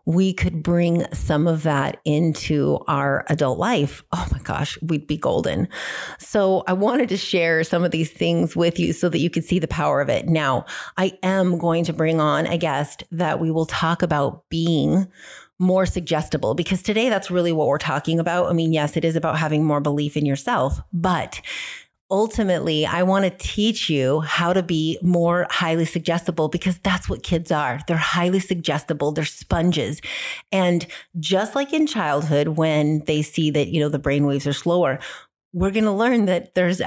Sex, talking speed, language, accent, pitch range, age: female, 190 wpm, English, American, 155-185 Hz, 30-49